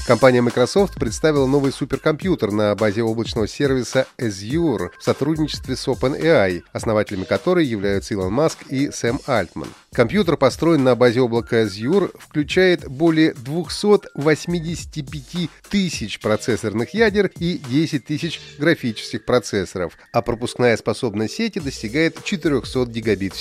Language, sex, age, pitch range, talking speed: Russian, male, 30-49, 110-155 Hz, 120 wpm